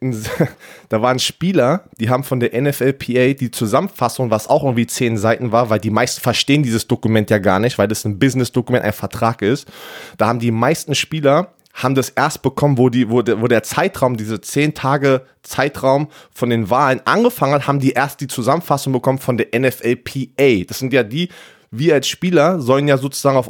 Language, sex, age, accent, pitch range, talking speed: German, male, 20-39, German, 120-145 Hz, 190 wpm